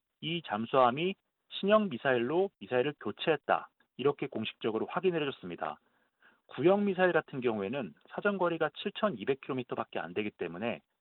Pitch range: 125-180 Hz